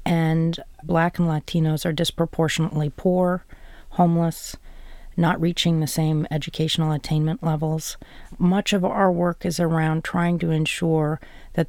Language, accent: English, American